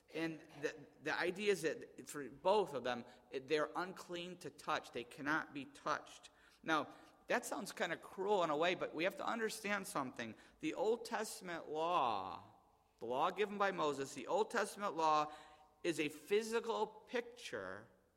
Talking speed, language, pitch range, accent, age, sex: 165 wpm, English, 150-230 Hz, American, 50-69, male